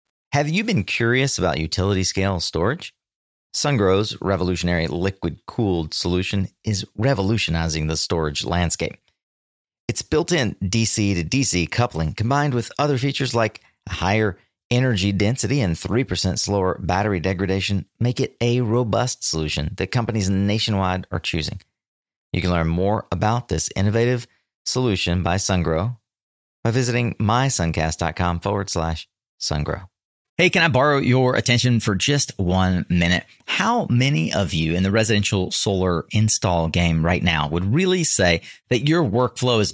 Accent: American